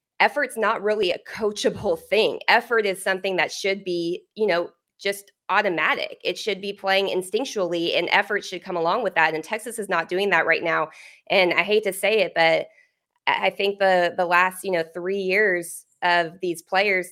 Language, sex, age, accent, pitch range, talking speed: English, female, 20-39, American, 165-195 Hz, 195 wpm